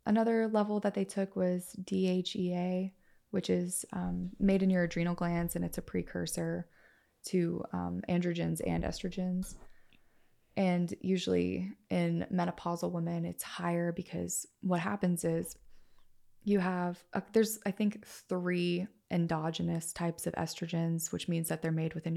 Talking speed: 140 wpm